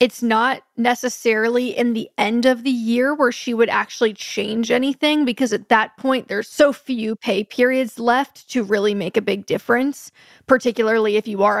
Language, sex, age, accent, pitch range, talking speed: English, female, 10-29, American, 215-255 Hz, 180 wpm